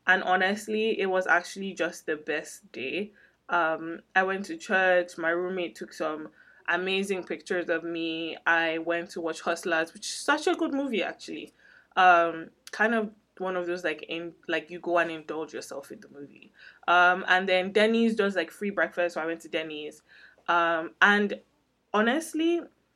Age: 20-39